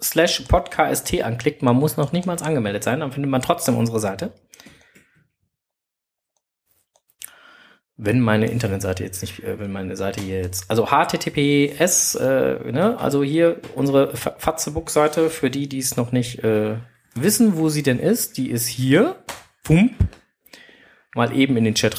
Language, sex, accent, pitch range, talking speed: German, male, German, 100-140 Hz, 140 wpm